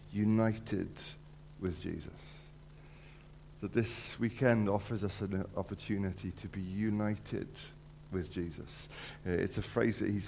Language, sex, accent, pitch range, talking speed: English, male, British, 100-145 Hz, 115 wpm